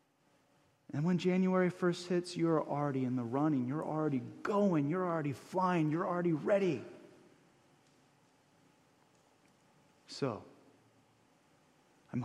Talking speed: 105 wpm